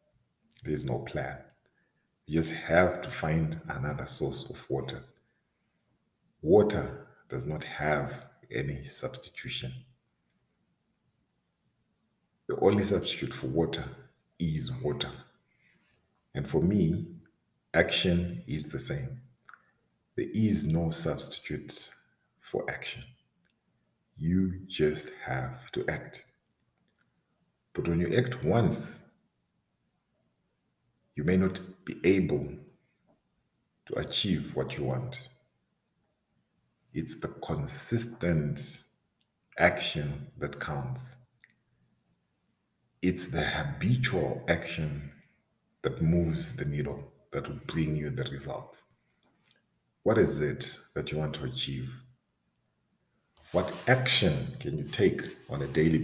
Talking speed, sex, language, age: 100 wpm, male, English, 50-69